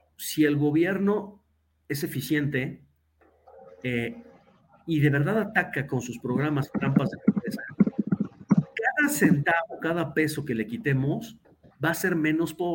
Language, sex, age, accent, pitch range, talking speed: Spanish, male, 50-69, Mexican, 125-170 Hz, 125 wpm